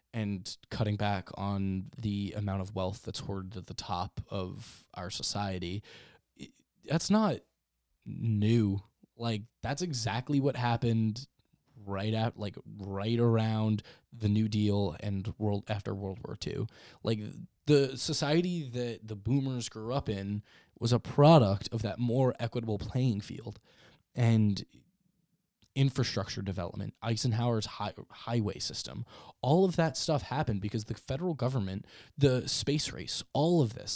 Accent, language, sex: American, English, male